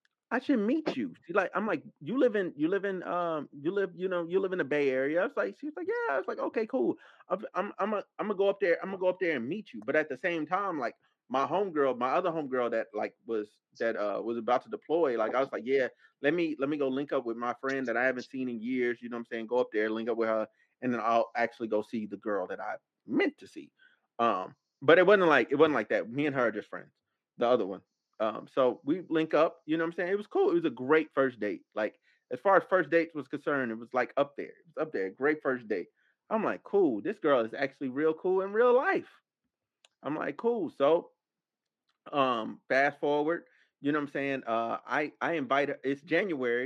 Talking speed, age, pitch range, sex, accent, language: 265 wpm, 30-49, 125-195 Hz, male, American, English